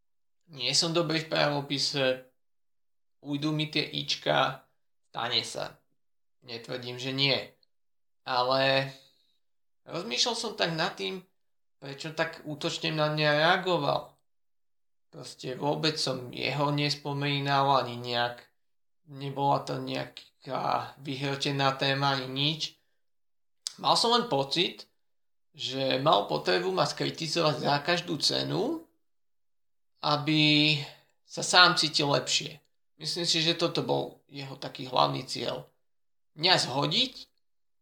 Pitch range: 130-160 Hz